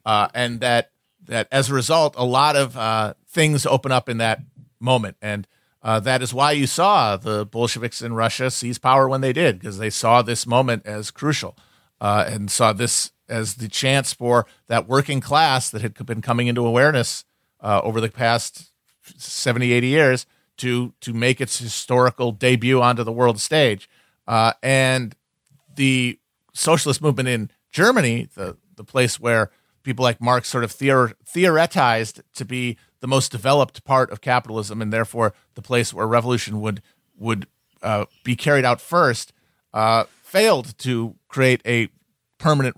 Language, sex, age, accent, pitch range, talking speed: English, male, 50-69, American, 110-130 Hz, 165 wpm